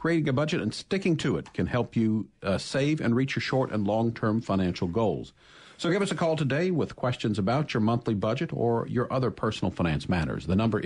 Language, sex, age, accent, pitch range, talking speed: English, male, 50-69, American, 105-140 Hz, 220 wpm